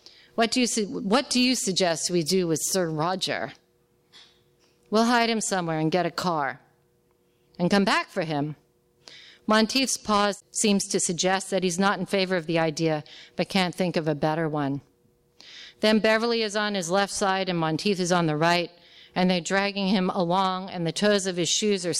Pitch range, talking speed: 170-215 Hz, 185 wpm